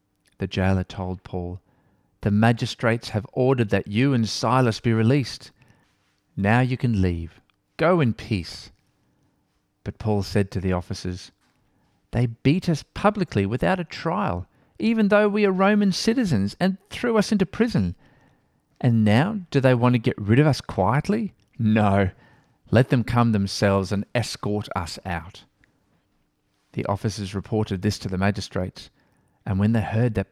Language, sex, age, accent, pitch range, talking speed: English, male, 40-59, Australian, 95-125 Hz, 150 wpm